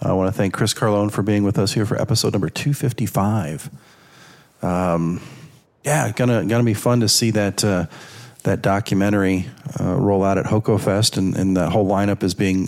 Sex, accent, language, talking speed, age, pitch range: male, American, English, 195 wpm, 40-59, 95-115 Hz